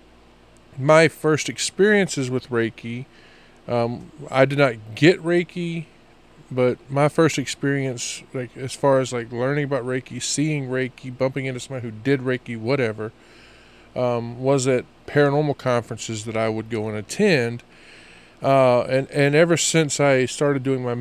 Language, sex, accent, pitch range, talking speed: English, male, American, 120-140 Hz, 150 wpm